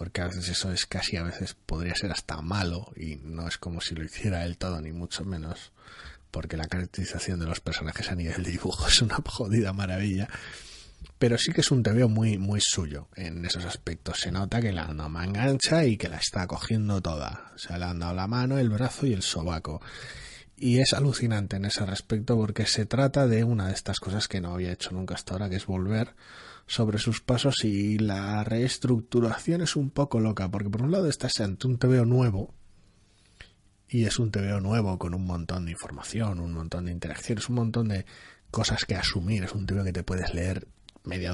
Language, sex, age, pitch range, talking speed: Spanish, male, 30-49, 90-115 Hz, 210 wpm